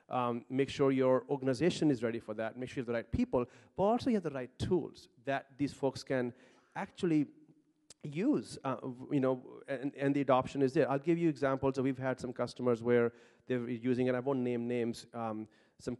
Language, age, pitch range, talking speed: English, 40-59, 125-155 Hz, 210 wpm